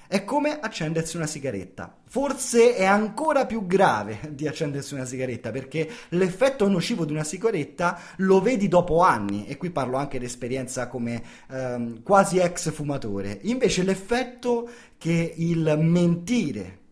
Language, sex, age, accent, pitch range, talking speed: Italian, male, 30-49, native, 130-195 Hz, 140 wpm